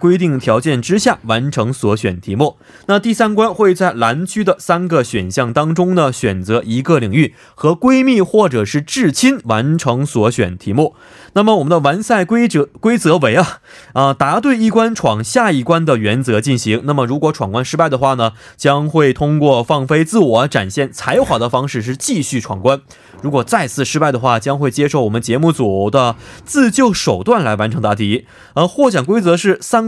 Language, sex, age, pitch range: Korean, male, 20-39, 120-175 Hz